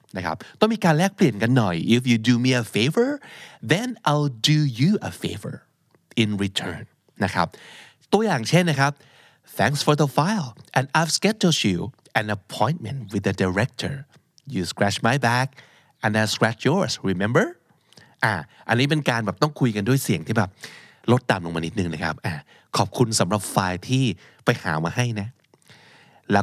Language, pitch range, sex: Thai, 100-135 Hz, male